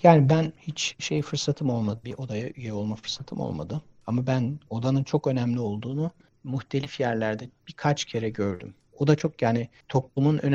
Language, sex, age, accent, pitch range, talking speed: Turkish, male, 60-79, native, 105-135 Hz, 165 wpm